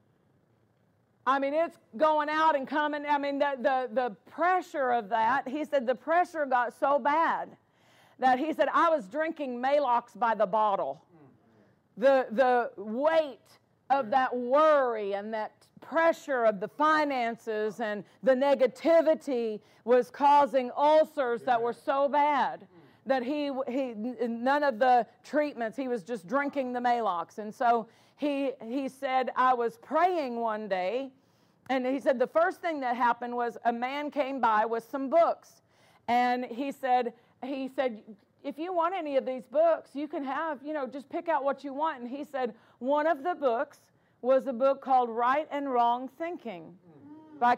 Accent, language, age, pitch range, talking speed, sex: American, English, 50-69, 240-290 Hz, 165 wpm, female